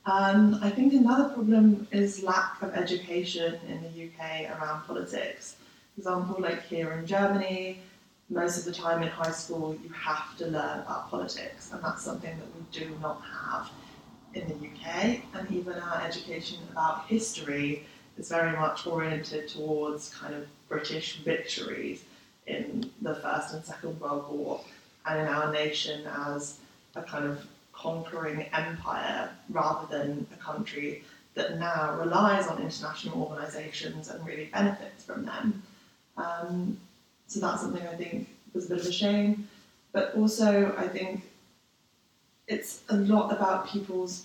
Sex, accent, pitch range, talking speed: female, British, 160-205 Hz, 150 wpm